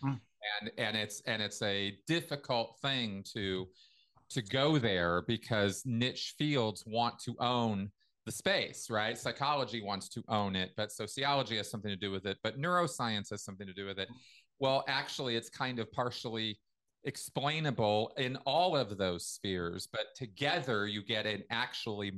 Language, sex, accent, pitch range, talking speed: English, male, American, 100-125 Hz, 160 wpm